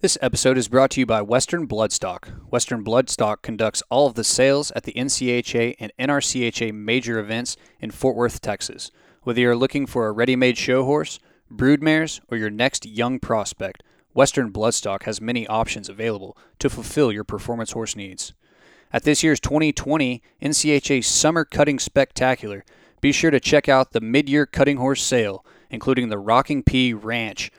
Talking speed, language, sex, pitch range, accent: 165 wpm, English, male, 115-140 Hz, American